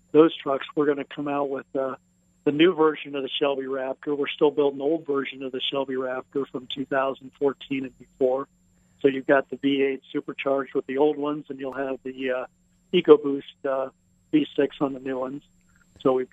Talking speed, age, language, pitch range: 200 wpm, 50-69, English, 130-150 Hz